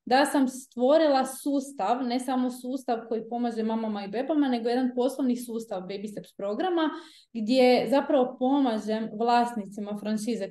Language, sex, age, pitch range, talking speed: Croatian, female, 20-39, 215-260 Hz, 135 wpm